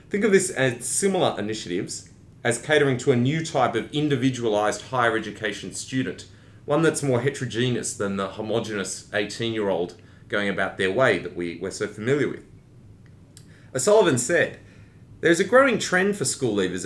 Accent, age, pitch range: Australian, 30-49, 105-135 Hz